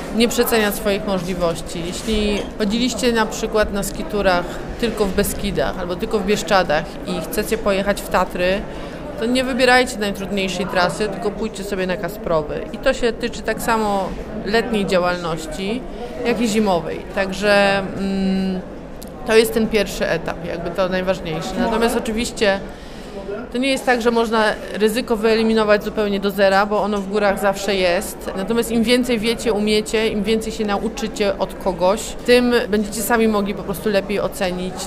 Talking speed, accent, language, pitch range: 155 wpm, native, Polish, 190-220 Hz